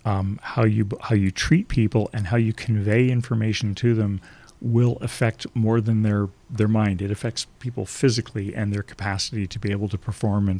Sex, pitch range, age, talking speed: male, 100-115 Hz, 40-59, 195 wpm